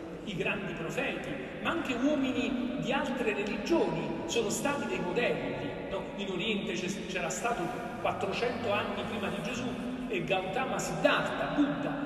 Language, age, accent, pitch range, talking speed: Italian, 40-59, native, 210-295 Hz, 135 wpm